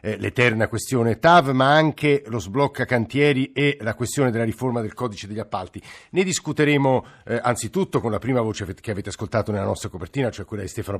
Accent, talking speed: native, 190 wpm